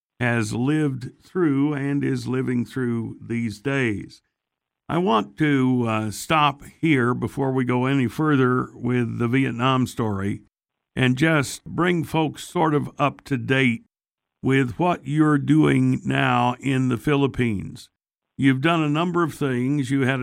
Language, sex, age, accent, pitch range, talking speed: English, male, 60-79, American, 120-145 Hz, 145 wpm